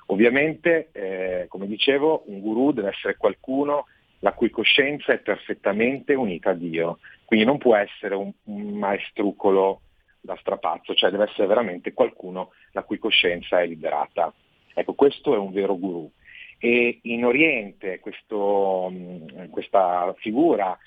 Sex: male